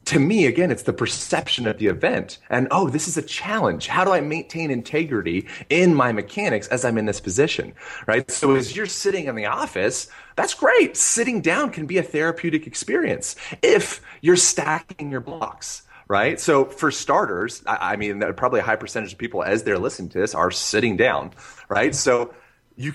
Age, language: 30-49, English